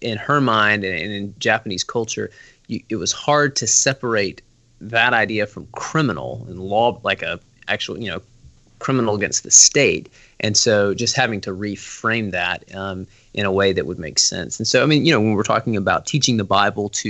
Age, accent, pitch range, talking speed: 20-39, American, 100-120 Hz, 195 wpm